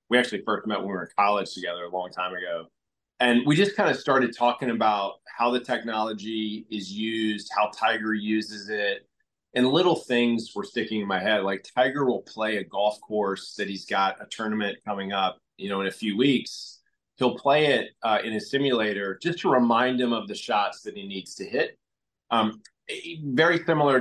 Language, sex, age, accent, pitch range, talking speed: English, male, 30-49, American, 100-125 Hz, 200 wpm